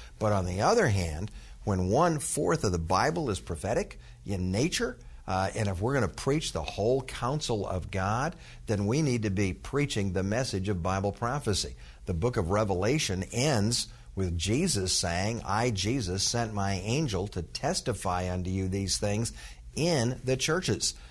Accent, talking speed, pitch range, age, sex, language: American, 170 wpm, 95-120 Hz, 50-69, male, English